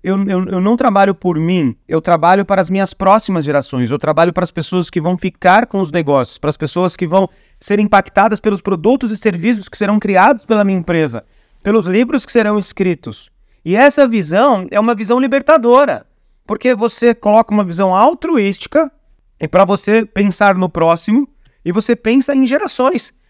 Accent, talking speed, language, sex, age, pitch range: Brazilian, 180 wpm, Portuguese, male, 30-49, 180-235 Hz